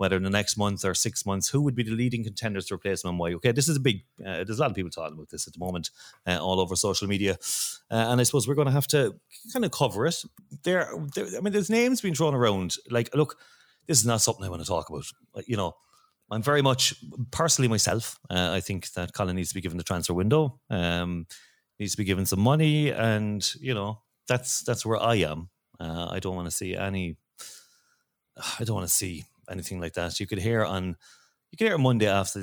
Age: 30-49